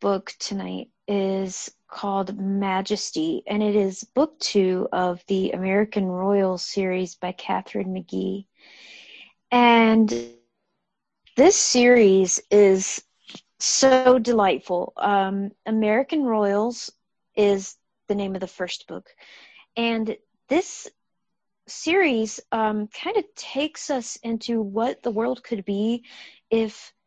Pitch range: 190-235 Hz